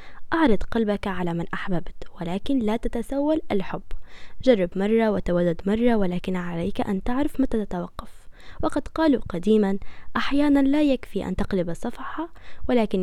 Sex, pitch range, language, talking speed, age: female, 195-255 Hz, Arabic, 135 wpm, 10-29